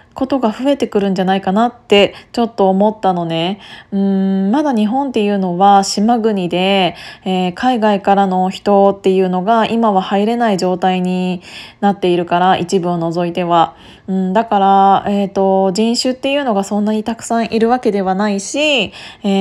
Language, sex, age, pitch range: Japanese, female, 20-39, 190-230 Hz